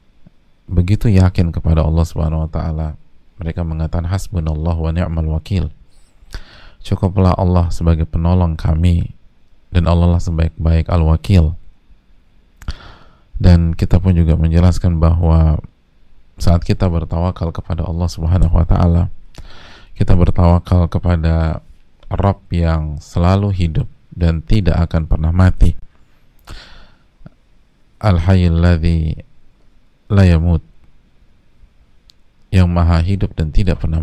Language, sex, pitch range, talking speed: Indonesian, male, 80-95 Hz, 100 wpm